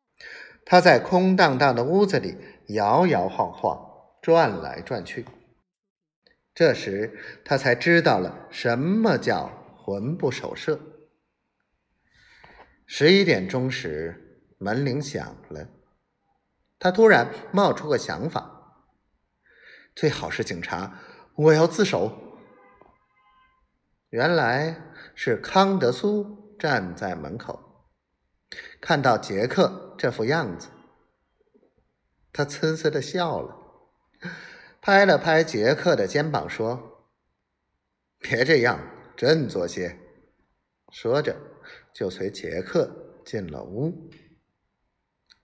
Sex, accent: male, native